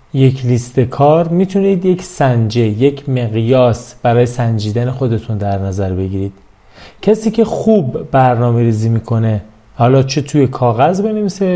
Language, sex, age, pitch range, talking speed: Persian, male, 30-49, 115-150 Hz, 130 wpm